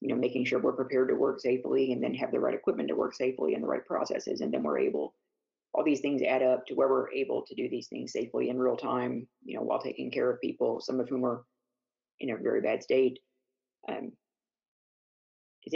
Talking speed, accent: 230 wpm, American